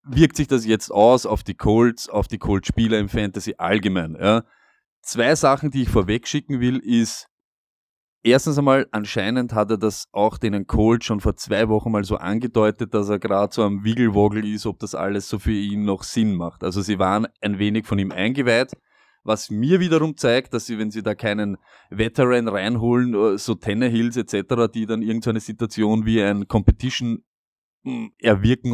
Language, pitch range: German, 100-120 Hz